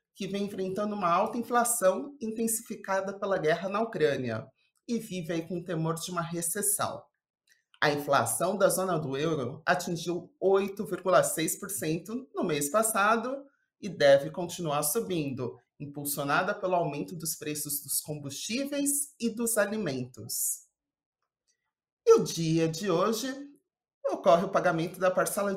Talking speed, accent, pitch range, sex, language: 130 wpm, Brazilian, 155-205 Hz, male, Portuguese